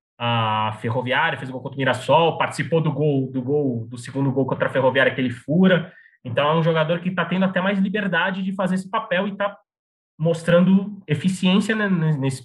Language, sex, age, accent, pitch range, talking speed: Portuguese, male, 20-39, Brazilian, 130-165 Hz, 200 wpm